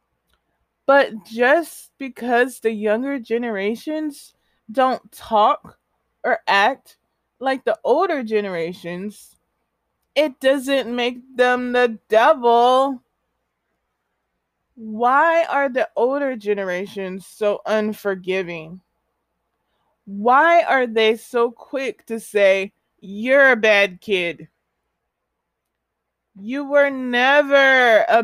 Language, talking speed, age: English, 90 wpm, 20-39